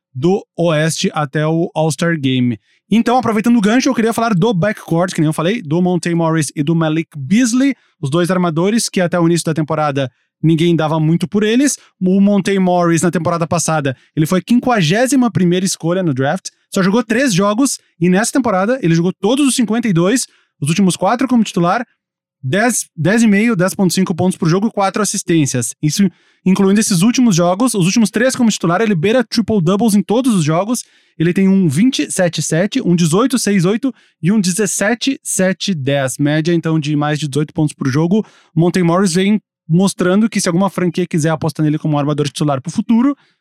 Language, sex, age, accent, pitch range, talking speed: Portuguese, male, 20-39, Brazilian, 165-215 Hz, 185 wpm